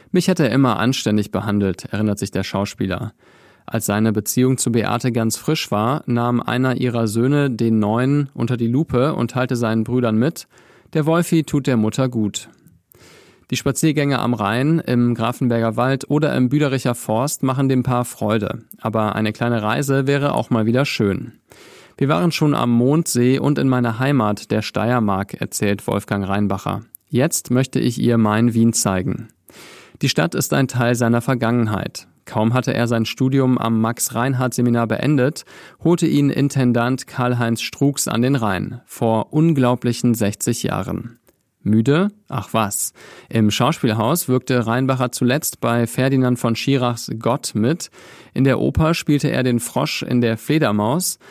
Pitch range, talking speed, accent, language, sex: 110-135 Hz, 155 wpm, German, German, male